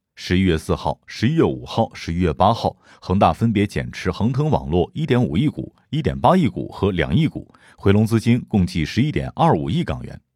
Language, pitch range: Chinese, 90-120 Hz